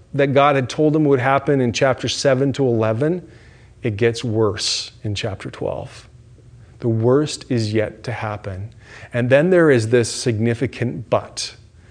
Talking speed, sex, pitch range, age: 155 wpm, male, 110-135 Hz, 30-49